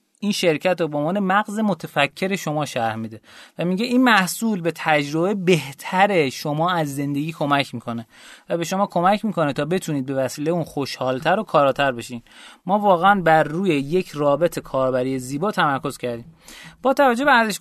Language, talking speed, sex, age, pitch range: Persian, 170 wpm, male, 30-49, 145-195 Hz